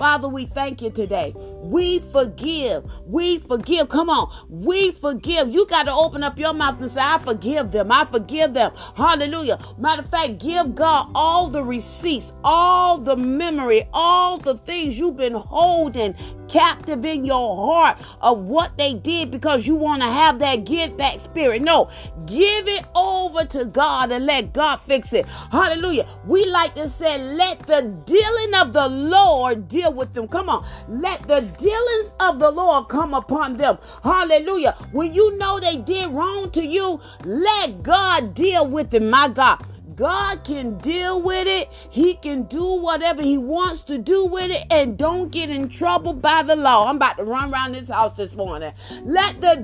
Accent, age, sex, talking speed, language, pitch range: American, 40-59, female, 180 wpm, English, 270-350 Hz